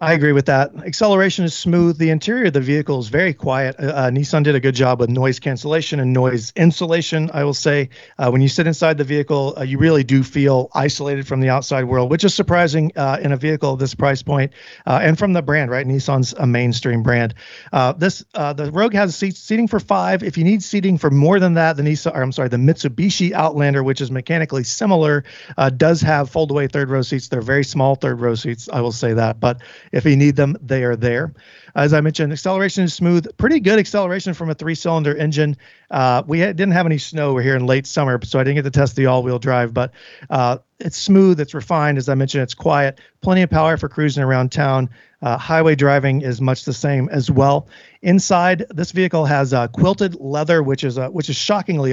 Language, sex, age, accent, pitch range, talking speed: English, male, 40-59, American, 130-165 Hz, 230 wpm